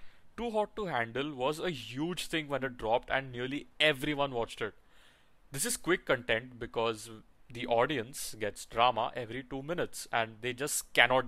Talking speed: 170 wpm